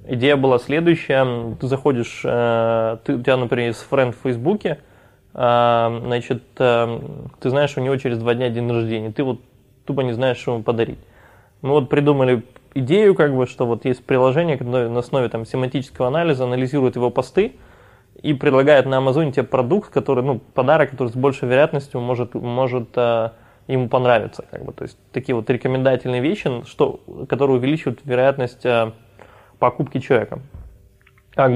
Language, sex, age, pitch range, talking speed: Russian, male, 20-39, 120-135 Hz, 155 wpm